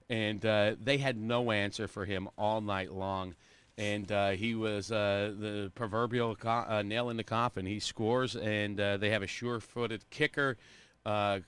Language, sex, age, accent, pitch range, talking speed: English, male, 40-59, American, 105-130 Hz, 180 wpm